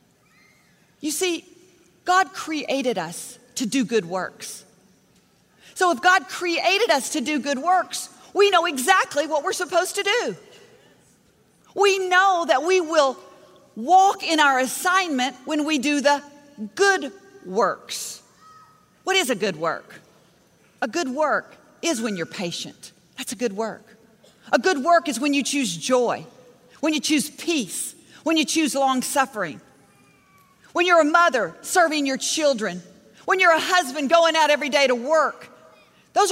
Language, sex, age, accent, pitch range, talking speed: English, female, 40-59, American, 255-370 Hz, 150 wpm